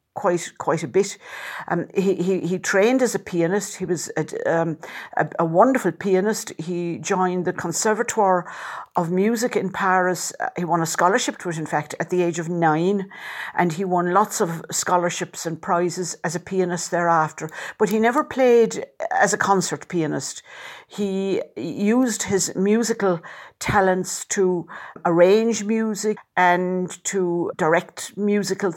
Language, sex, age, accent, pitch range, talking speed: English, female, 60-79, British, 175-210 Hz, 155 wpm